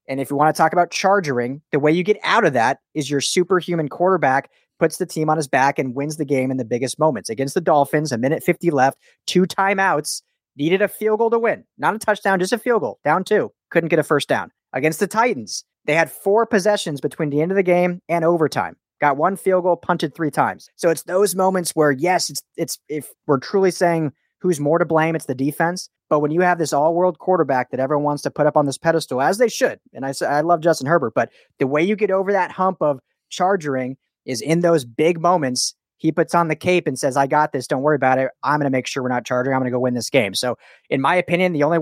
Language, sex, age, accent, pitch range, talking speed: English, male, 30-49, American, 145-180 Hz, 260 wpm